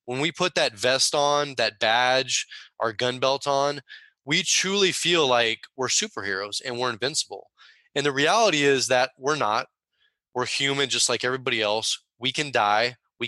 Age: 20-39